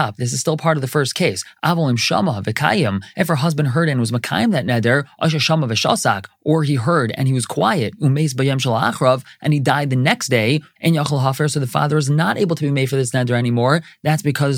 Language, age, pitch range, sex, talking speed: English, 30-49, 125-165 Hz, male, 210 wpm